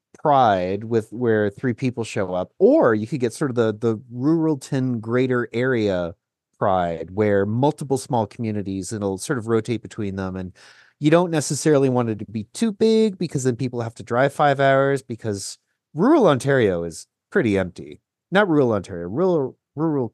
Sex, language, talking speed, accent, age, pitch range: male, English, 175 wpm, American, 30-49, 100-135 Hz